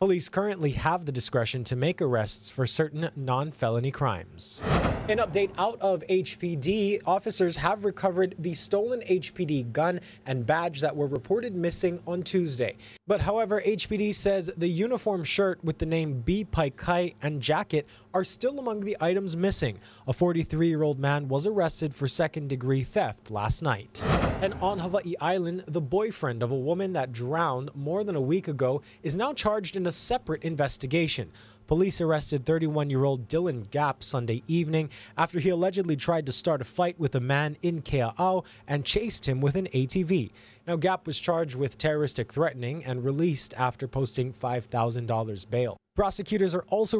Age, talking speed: 20-39, 165 wpm